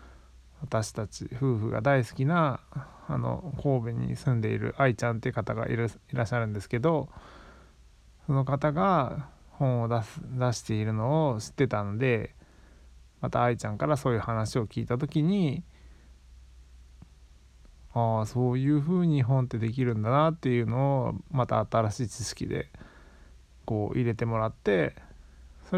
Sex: male